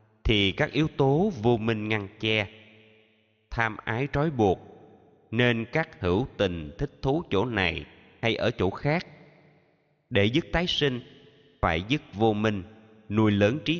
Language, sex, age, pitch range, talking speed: Vietnamese, male, 20-39, 95-125 Hz, 150 wpm